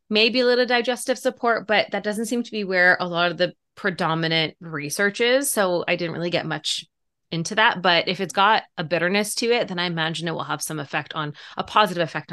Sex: female